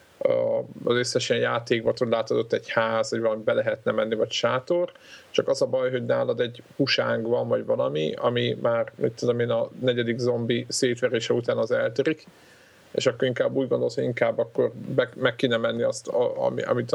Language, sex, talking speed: Hungarian, male, 190 wpm